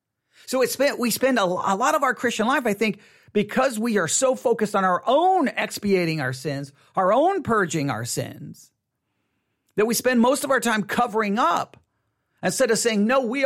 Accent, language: American, English